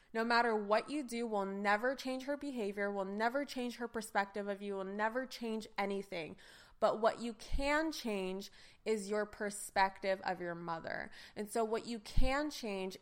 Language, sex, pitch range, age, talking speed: English, female, 200-245 Hz, 20-39, 175 wpm